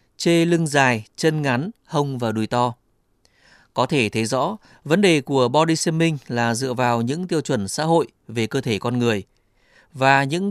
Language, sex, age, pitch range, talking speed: Vietnamese, male, 20-39, 115-155 Hz, 190 wpm